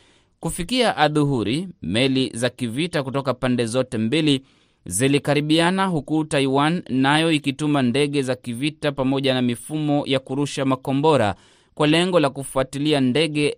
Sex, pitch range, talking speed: male, 120-145 Hz, 125 wpm